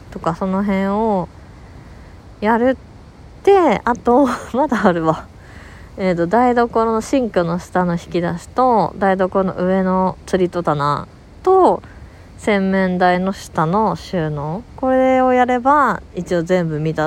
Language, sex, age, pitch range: Japanese, female, 20-39, 175-230 Hz